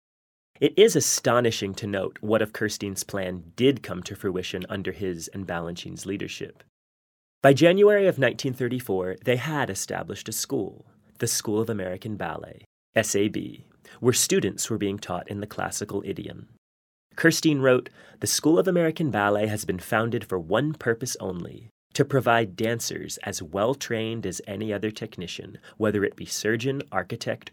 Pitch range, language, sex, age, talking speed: 100-135 Hz, English, male, 30-49, 155 wpm